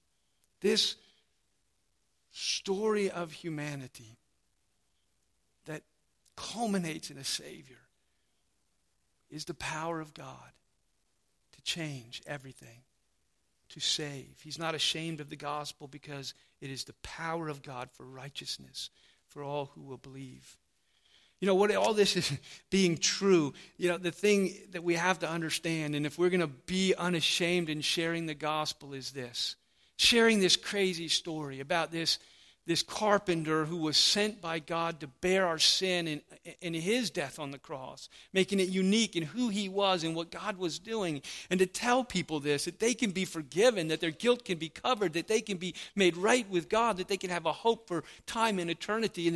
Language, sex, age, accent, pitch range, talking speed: English, male, 50-69, American, 145-190 Hz, 170 wpm